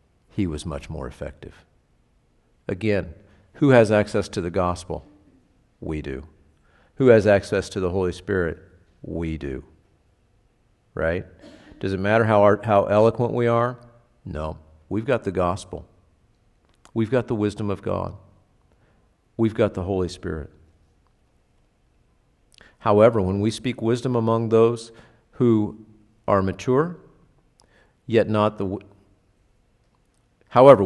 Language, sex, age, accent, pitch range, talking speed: English, male, 50-69, American, 95-115 Hz, 120 wpm